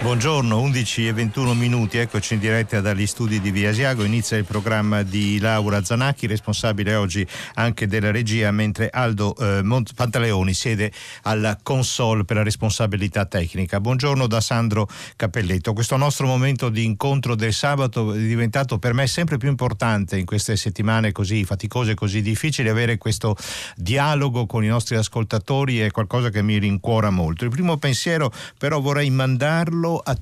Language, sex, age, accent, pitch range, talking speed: Italian, male, 50-69, native, 100-125 Hz, 165 wpm